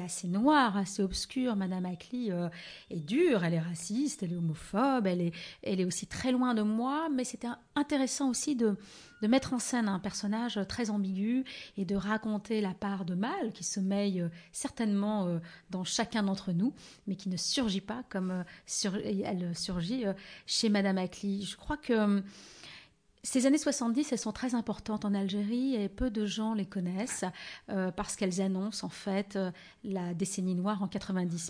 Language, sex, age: French, female, 30-49